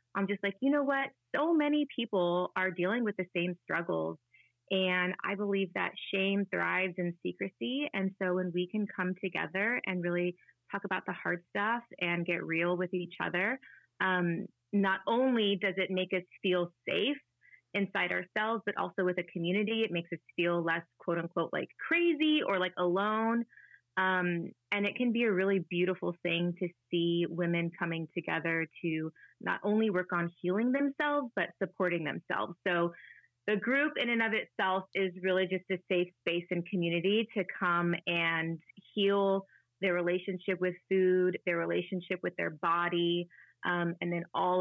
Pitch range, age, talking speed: 175-200 Hz, 20-39, 170 wpm